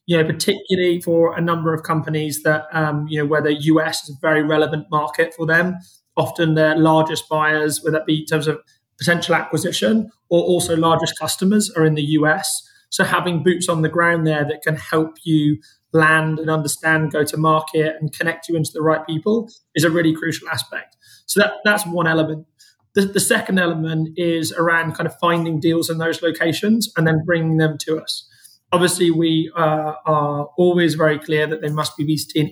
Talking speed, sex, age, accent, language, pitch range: 195 wpm, male, 20-39, British, English, 155-175 Hz